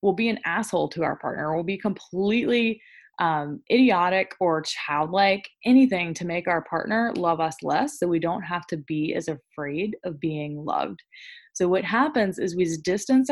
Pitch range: 165-230 Hz